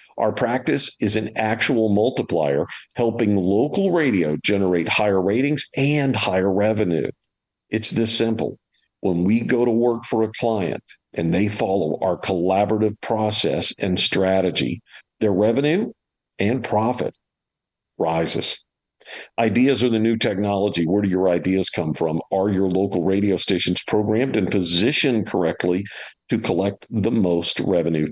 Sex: male